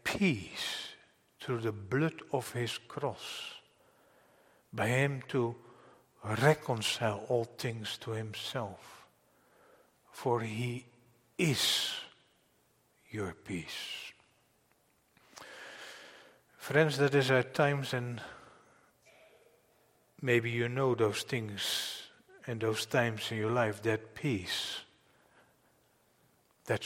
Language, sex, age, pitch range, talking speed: English, male, 60-79, 110-135 Hz, 85 wpm